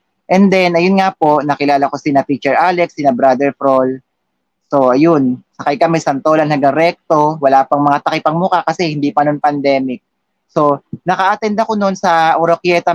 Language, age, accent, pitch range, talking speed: Filipino, 20-39, native, 145-175 Hz, 165 wpm